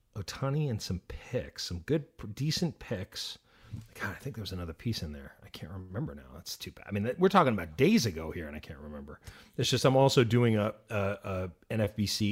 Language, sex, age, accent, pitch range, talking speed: English, male, 30-49, American, 95-125 Hz, 220 wpm